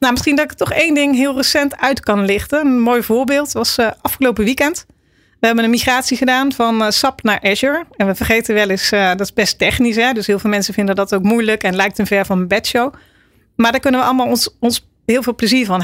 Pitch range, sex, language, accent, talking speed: 205-245 Hz, female, Dutch, Dutch, 250 wpm